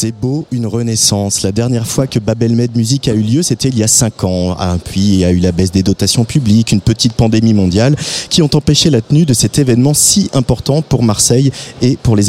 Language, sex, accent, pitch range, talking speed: French, male, French, 110-130 Hz, 245 wpm